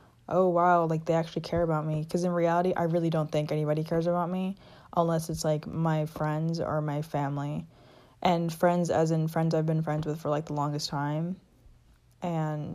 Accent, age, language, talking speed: American, 20-39, English, 200 wpm